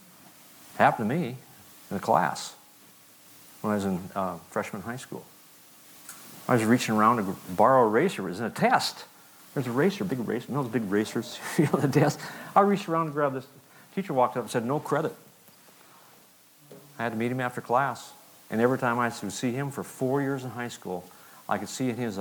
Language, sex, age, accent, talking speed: English, male, 50-69, American, 215 wpm